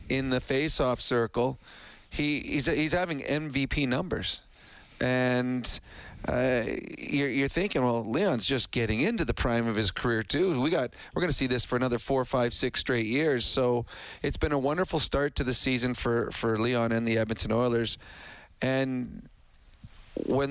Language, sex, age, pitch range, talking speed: English, male, 40-59, 115-130 Hz, 170 wpm